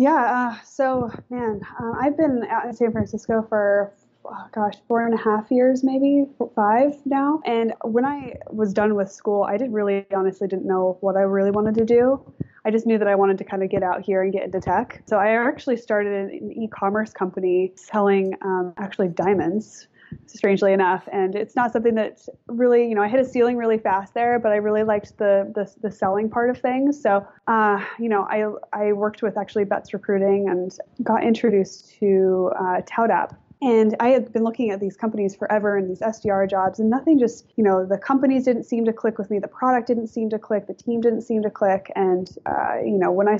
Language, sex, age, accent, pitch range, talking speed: English, female, 20-39, American, 195-235 Hz, 215 wpm